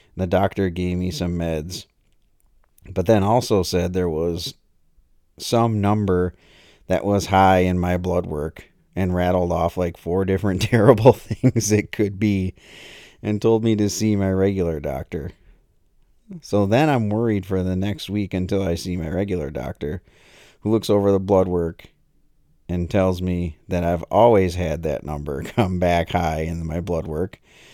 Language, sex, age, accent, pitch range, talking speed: English, male, 40-59, American, 85-100 Hz, 165 wpm